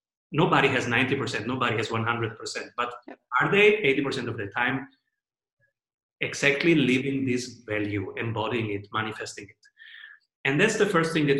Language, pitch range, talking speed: English, 120-175 Hz, 140 wpm